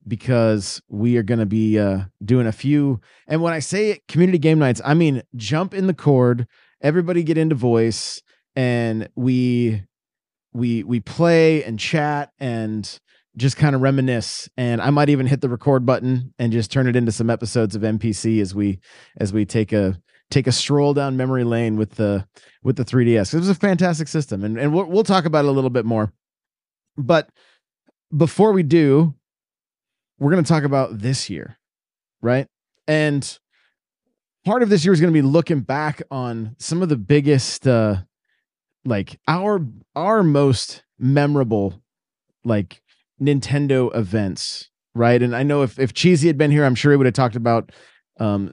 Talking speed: 180 wpm